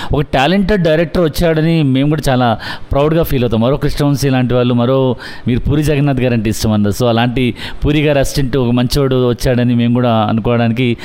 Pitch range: 120-155 Hz